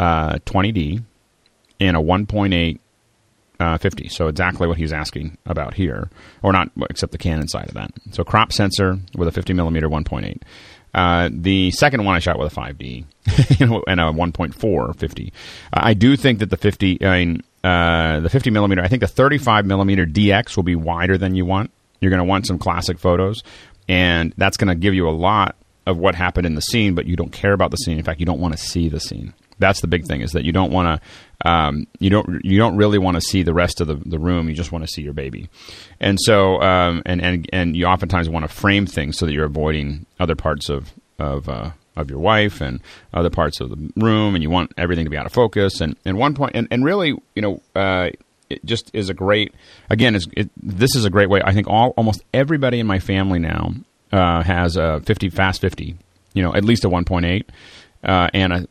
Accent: American